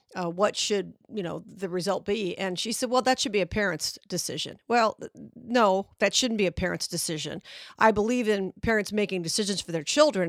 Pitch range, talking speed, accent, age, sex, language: 185-220 Hz, 205 wpm, American, 50-69, female, English